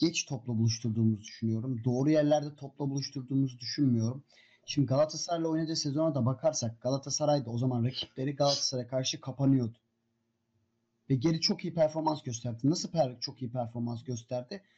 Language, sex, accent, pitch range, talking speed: Turkish, male, native, 125-195 Hz, 135 wpm